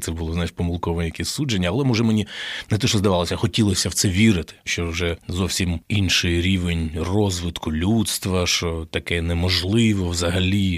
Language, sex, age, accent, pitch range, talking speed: Ukrainian, male, 20-39, native, 85-100 Hz, 155 wpm